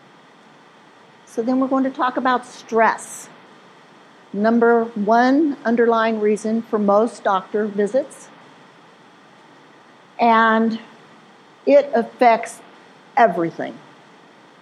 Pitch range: 185-235 Hz